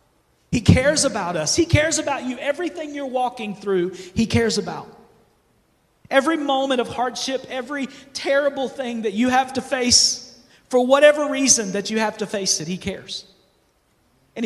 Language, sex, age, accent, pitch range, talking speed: English, male, 40-59, American, 195-255 Hz, 160 wpm